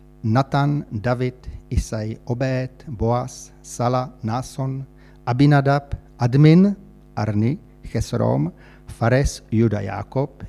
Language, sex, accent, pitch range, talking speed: Czech, male, native, 115-145 Hz, 80 wpm